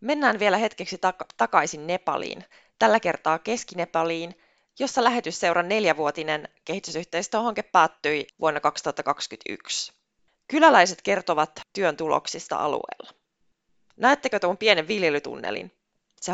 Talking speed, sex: 90 wpm, female